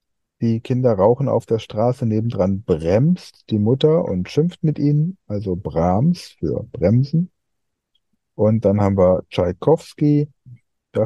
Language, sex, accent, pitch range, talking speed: German, male, German, 90-120 Hz, 130 wpm